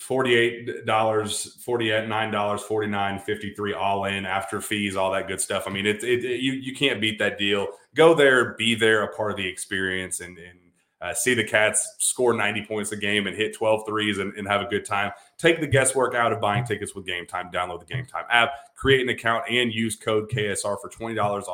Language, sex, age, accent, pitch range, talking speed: English, male, 30-49, American, 100-120 Hz, 215 wpm